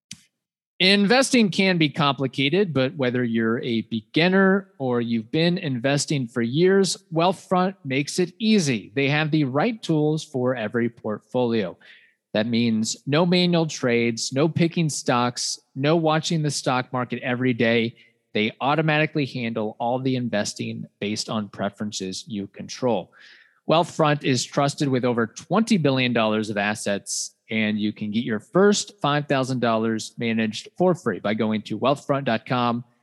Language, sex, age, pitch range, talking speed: English, male, 30-49, 115-160 Hz, 140 wpm